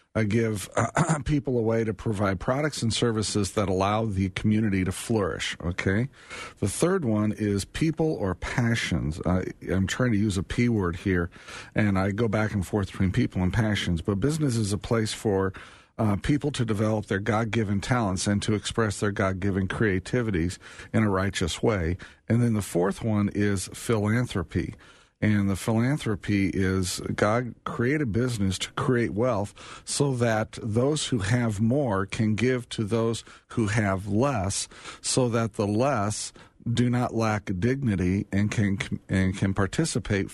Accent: American